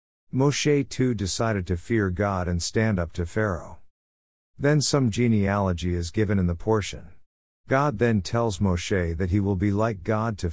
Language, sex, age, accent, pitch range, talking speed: English, male, 50-69, American, 90-115 Hz, 170 wpm